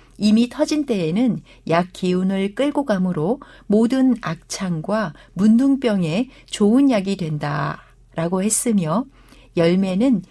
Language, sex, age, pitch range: Korean, female, 60-79, 175-245 Hz